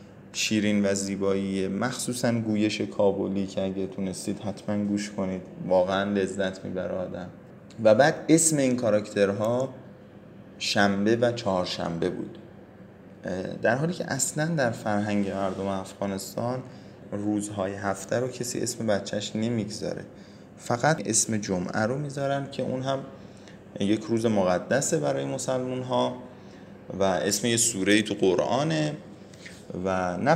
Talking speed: 120 wpm